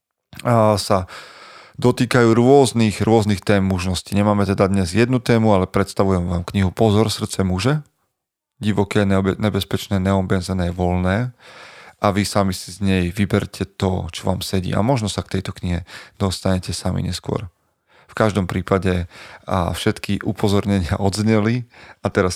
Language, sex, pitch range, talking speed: Slovak, male, 95-110 Hz, 135 wpm